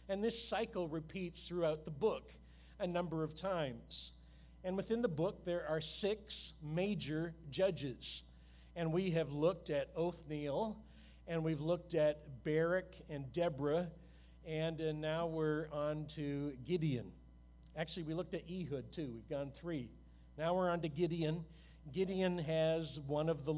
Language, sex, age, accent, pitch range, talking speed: English, male, 50-69, American, 145-180 Hz, 150 wpm